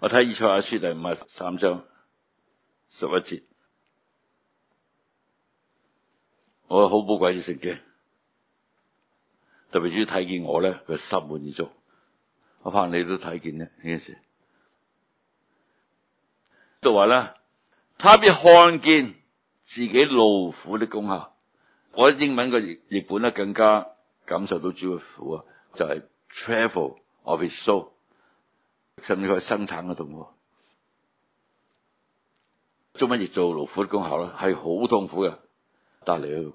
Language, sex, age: Chinese, male, 60-79